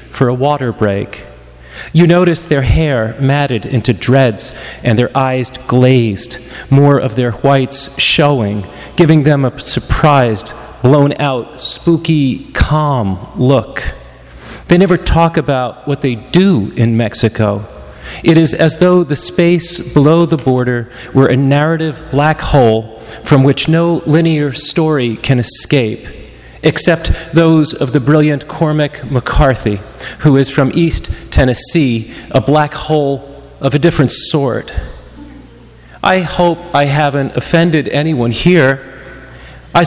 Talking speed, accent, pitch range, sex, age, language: 130 wpm, American, 120-155 Hz, male, 40-59, English